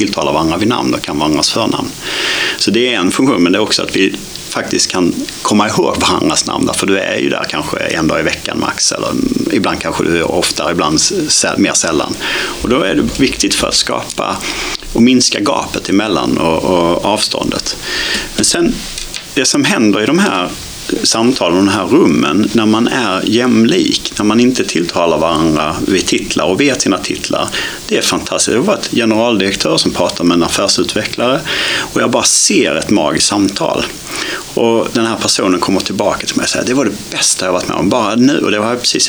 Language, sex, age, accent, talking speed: Swedish, male, 30-49, Norwegian, 205 wpm